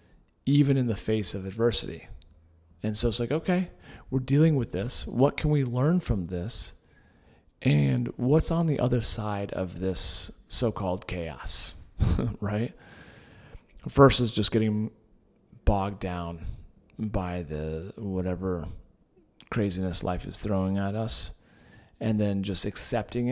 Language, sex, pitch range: English, male, 90-115 Hz